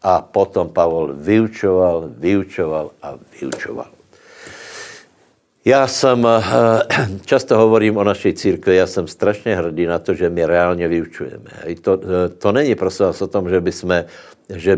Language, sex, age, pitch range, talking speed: Slovak, male, 60-79, 90-105 Hz, 130 wpm